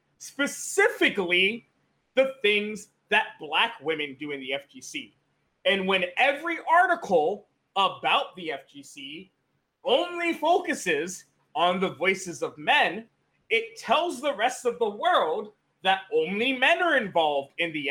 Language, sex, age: English, male, 30-49